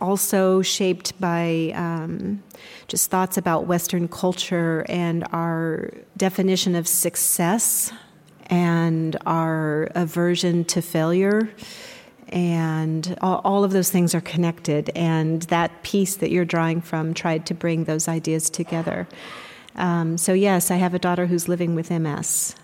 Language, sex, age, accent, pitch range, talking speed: English, female, 40-59, American, 170-190 Hz, 135 wpm